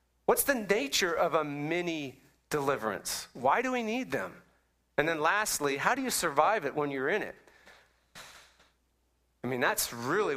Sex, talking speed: male, 160 wpm